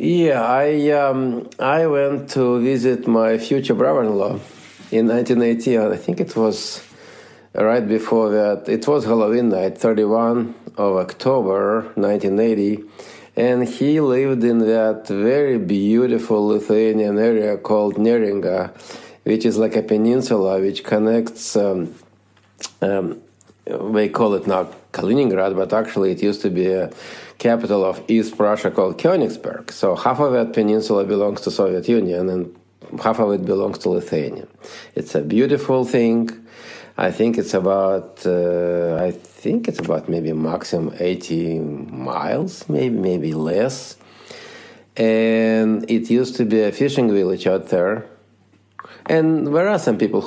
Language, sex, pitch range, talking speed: English, male, 100-115 Hz, 140 wpm